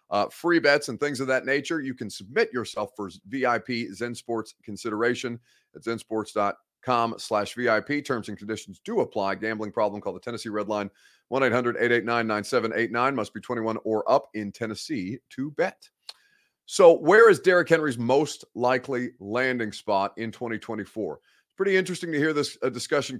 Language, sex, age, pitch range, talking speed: English, male, 30-49, 110-145 Hz, 155 wpm